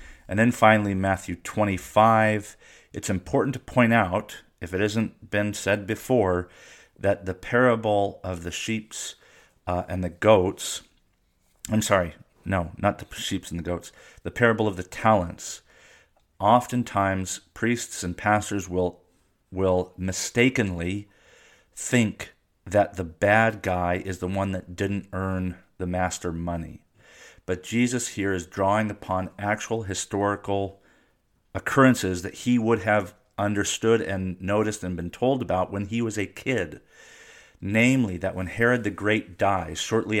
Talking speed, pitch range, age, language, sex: 140 wpm, 90-110 Hz, 40-59, English, male